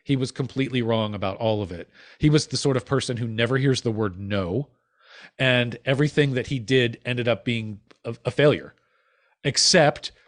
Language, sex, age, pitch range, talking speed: English, male, 40-59, 115-150 Hz, 185 wpm